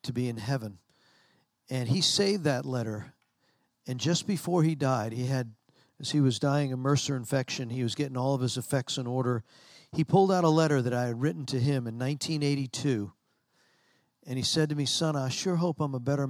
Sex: male